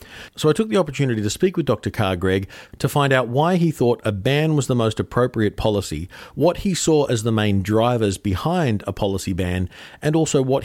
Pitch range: 105-140 Hz